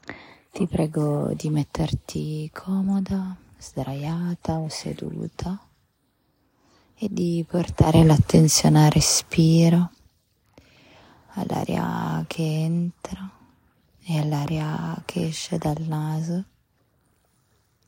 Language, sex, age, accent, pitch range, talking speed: Italian, female, 20-39, native, 150-175 Hz, 75 wpm